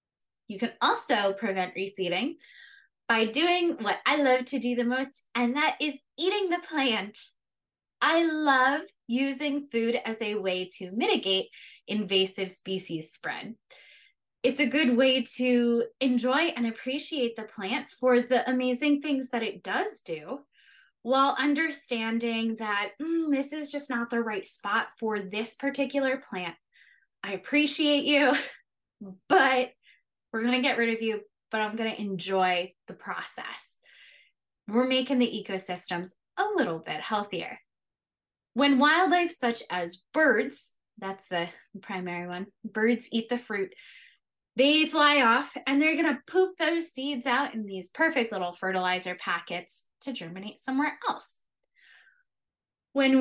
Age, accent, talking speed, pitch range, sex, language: 20-39, American, 140 wpm, 210-285 Hz, female, English